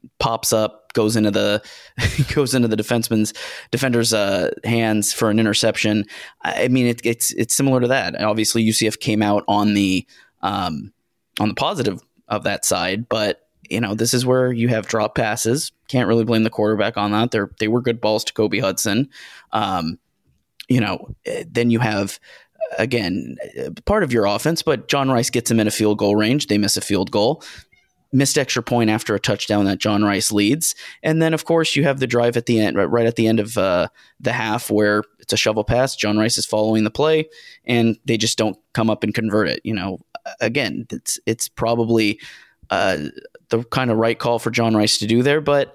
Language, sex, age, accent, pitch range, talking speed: English, male, 20-39, American, 105-120 Hz, 205 wpm